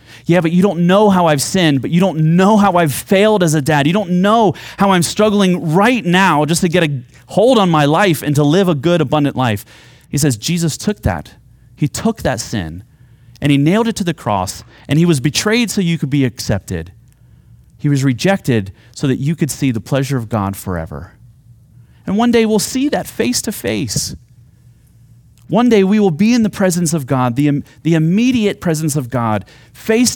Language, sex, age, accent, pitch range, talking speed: English, male, 30-49, American, 120-195 Hz, 210 wpm